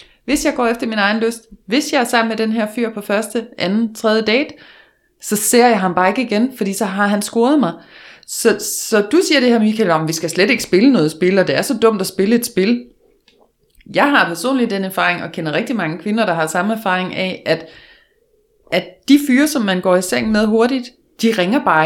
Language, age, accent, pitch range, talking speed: Danish, 30-49, native, 180-240 Hz, 235 wpm